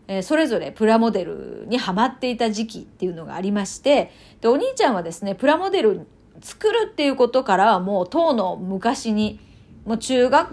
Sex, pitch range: female, 210-335 Hz